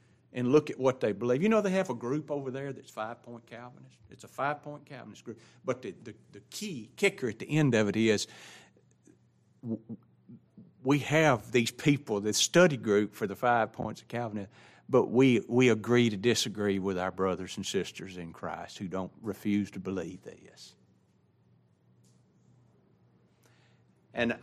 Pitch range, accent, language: 105-145 Hz, American, English